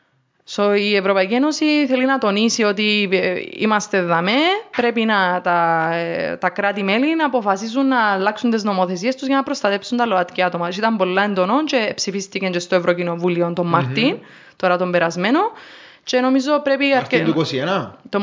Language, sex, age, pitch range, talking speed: Greek, female, 20-39, 185-255 Hz, 135 wpm